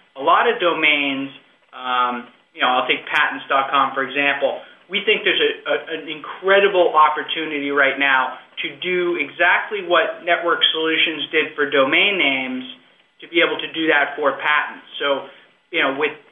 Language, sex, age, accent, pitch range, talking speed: English, male, 30-49, American, 140-170 Hz, 155 wpm